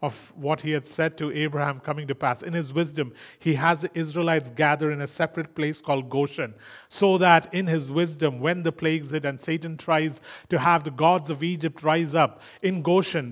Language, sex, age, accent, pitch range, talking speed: English, male, 40-59, Indian, 160-195 Hz, 205 wpm